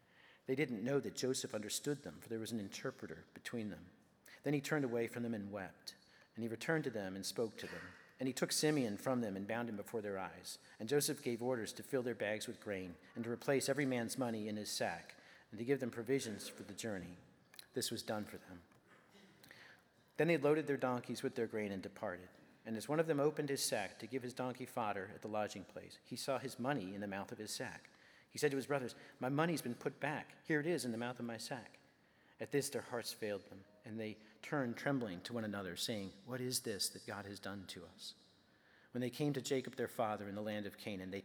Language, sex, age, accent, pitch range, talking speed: English, male, 40-59, American, 105-135 Hz, 245 wpm